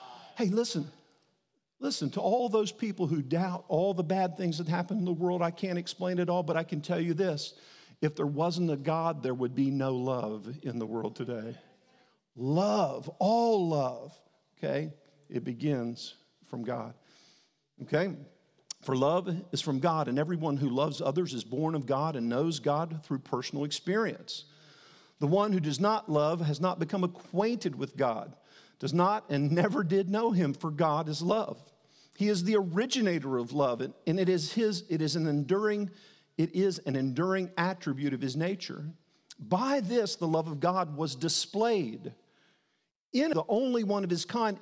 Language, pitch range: English, 150-200 Hz